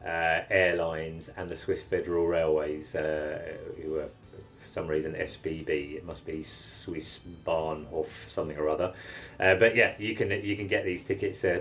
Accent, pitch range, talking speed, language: British, 80-95 Hz, 170 wpm, English